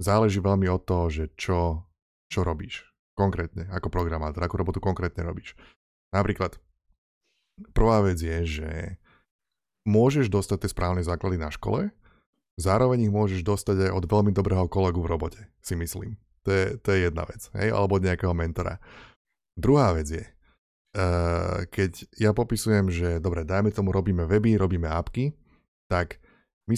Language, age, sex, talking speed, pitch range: Slovak, 20-39, male, 150 wpm, 90-110 Hz